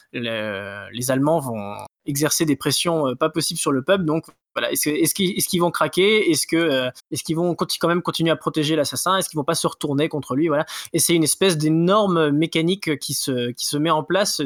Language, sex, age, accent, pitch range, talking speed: French, male, 20-39, French, 140-175 Hz, 230 wpm